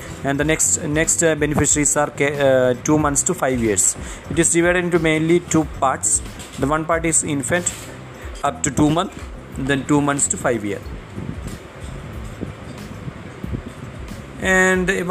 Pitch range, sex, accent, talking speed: 125-155 Hz, male, Indian, 145 wpm